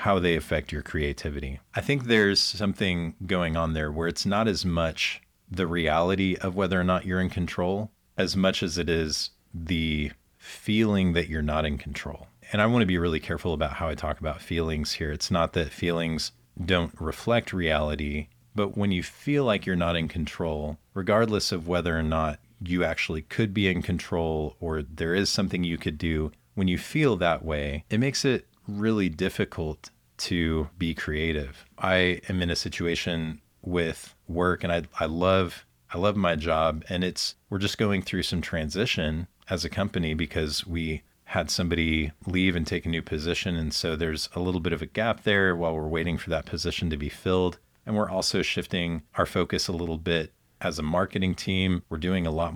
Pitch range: 80-95 Hz